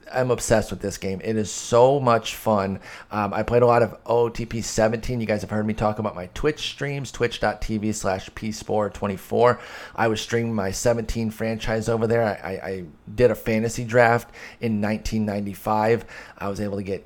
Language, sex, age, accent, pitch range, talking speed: English, male, 30-49, American, 105-120 Hz, 185 wpm